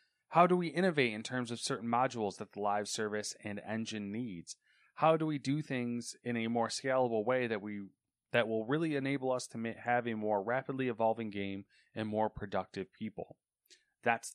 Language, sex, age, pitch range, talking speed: English, male, 30-49, 105-130 Hz, 190 wpm